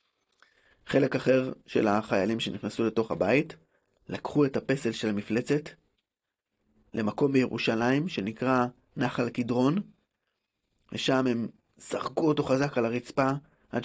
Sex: male